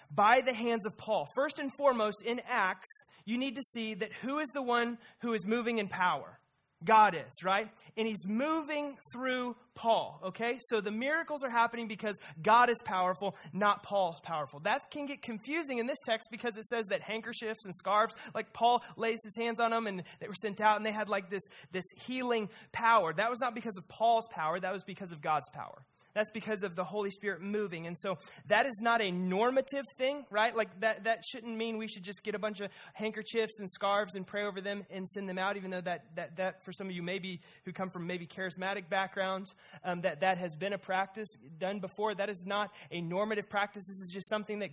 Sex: male